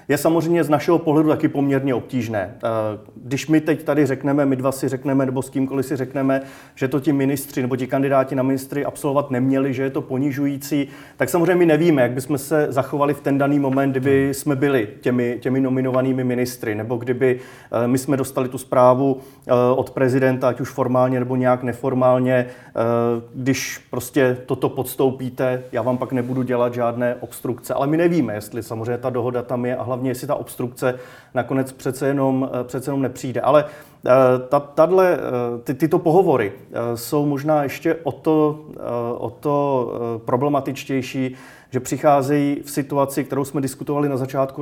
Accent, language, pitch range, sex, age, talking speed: native, Czech, 125-145 Hz, male, 30-49, 165 wpm